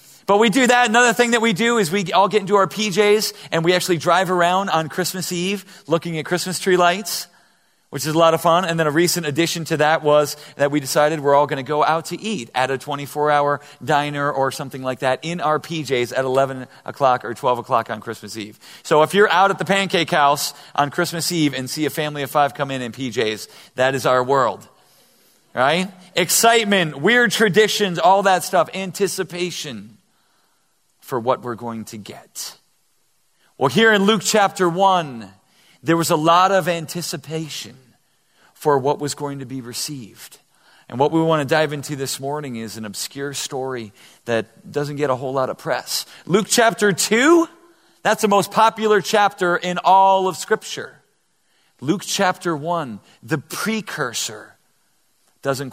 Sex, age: male, 40-59